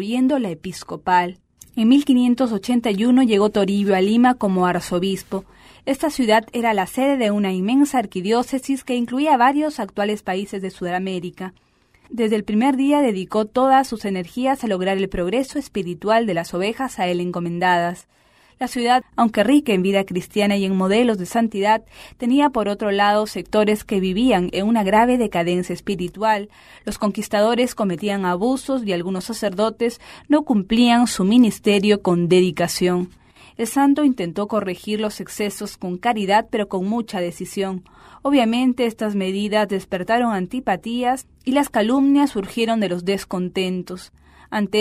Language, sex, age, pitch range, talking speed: English, female, 30-49, 190-240 Hz, 145 wpm